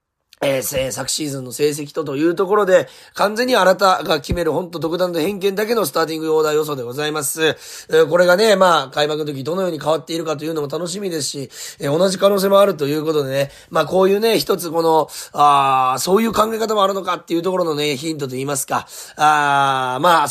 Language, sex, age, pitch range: Japanese, male, 30-49, 140-190 Hz